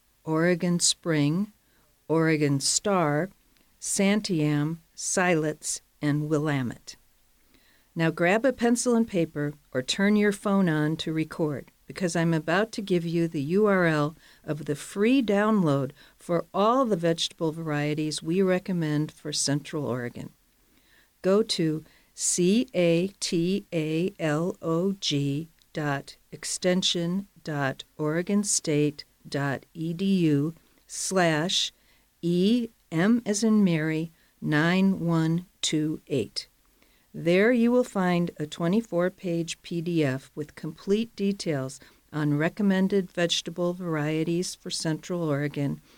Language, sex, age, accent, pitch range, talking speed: English, female, 50-69, American, 150-190 Hz, 95 wpm